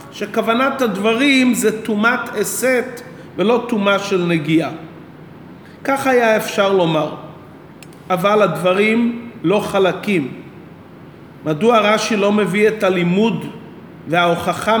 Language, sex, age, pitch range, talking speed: Hebrew, male, 40-59, 190-235 Hz, 95 wpm